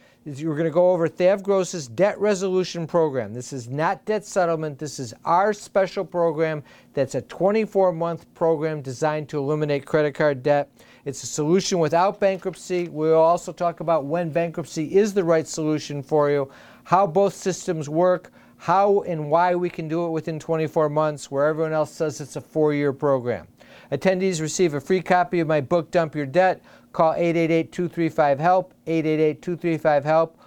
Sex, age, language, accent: male, 50-69, English, American